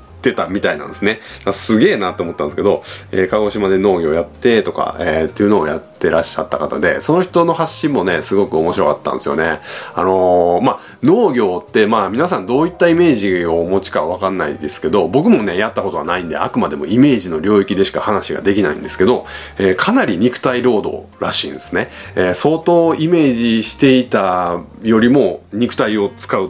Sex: male